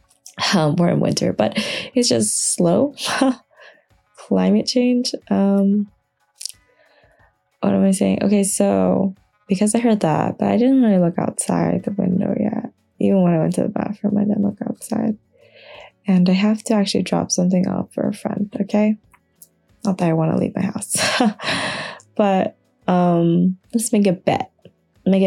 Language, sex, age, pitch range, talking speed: English, female, 20-39, 180-230 Hz, 160 wpm